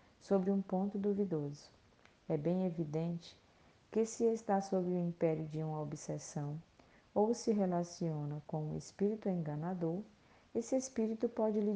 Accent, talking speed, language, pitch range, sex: Brazilian, 140 wpm, Portuguese, 165-210 Hz, female